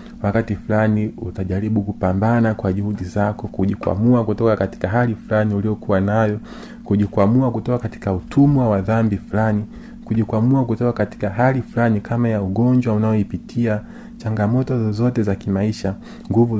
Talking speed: 125 wpm